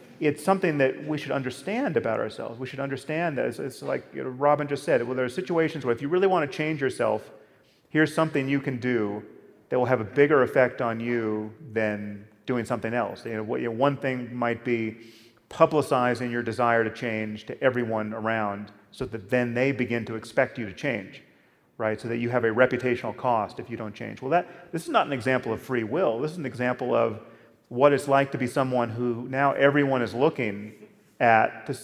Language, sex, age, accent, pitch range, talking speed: English, male, 30-49, American, 115-135 Hz, 215 wpm